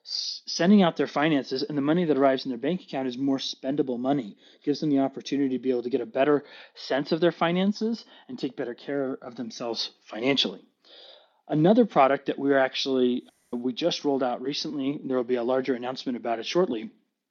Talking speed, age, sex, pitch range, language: 200 wpm, 20-39, male, 130-170 Hz, English